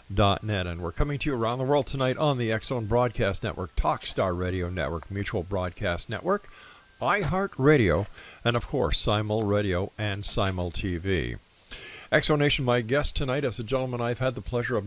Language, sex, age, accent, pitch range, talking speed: English, male, 50-69, American, 95-130 Hz, 180 wpm